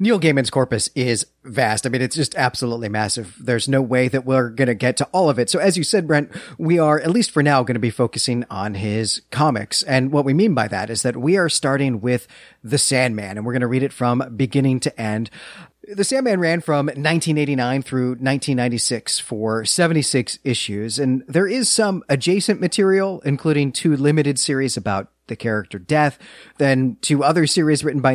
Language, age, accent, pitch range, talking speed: English, 30-49, American, 115-150 Hz, 205 wpm